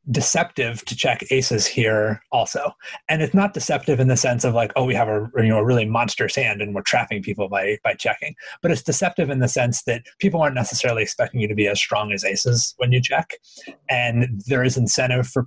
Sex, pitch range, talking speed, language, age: male, 110-135 Hz, 215 wpm, English, 30-49